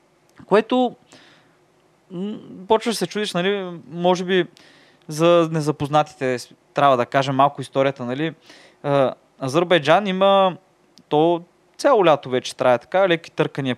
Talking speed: 115 wpm